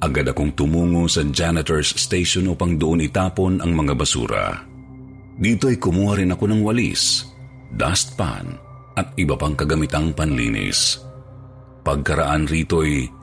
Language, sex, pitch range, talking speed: Filipino, male, 80-120 Hz, 120 wpm